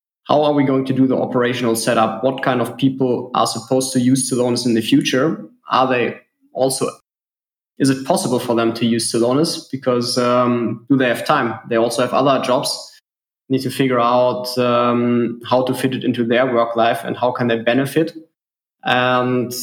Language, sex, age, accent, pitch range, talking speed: English, male, 20-39, German, 120-135 Hz, 190 wpm